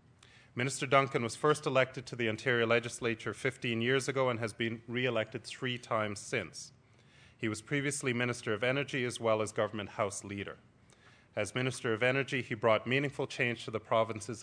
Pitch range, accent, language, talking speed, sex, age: 110-130 Hz, American, English, 175 wpm, male, 30-49